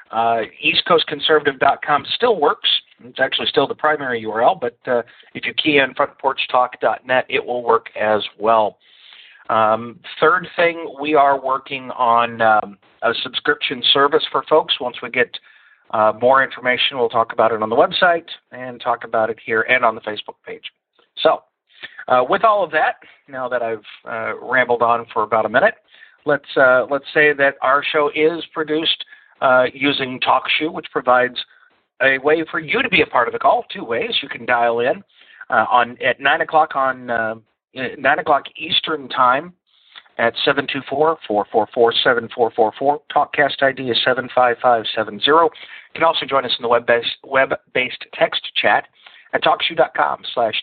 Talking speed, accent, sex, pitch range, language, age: 180 wpm, American, male, 120-150 Hz, English, 40-59